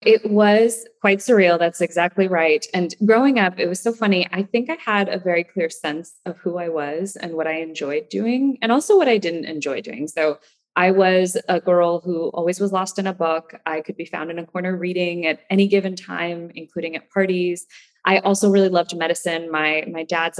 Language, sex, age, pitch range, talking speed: English, female, 20-39, 165-210 Hz, 215 wpm